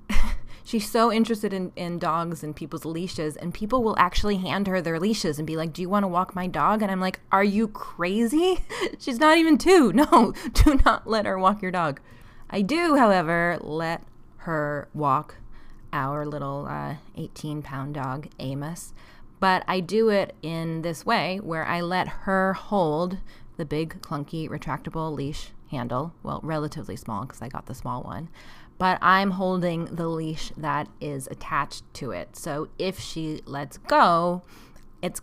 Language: English